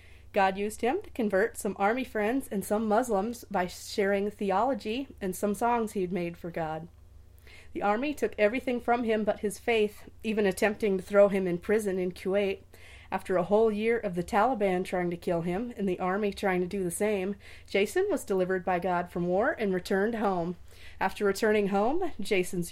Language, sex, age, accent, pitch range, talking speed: English, female, 30-49, American, 185-210 Hz, 195 wpm